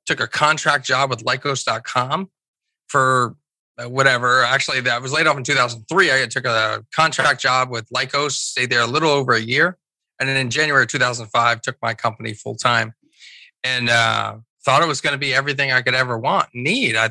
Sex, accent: male, American